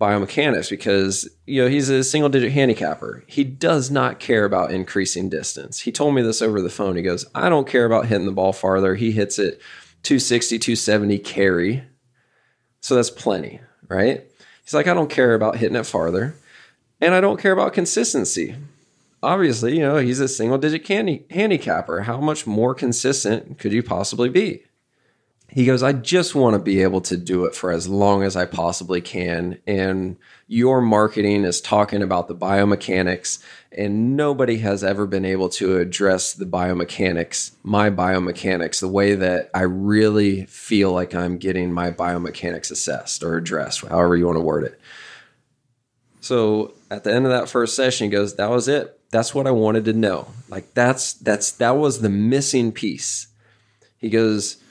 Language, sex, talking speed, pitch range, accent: English, male, 175 wpm, 95-125 Hz, American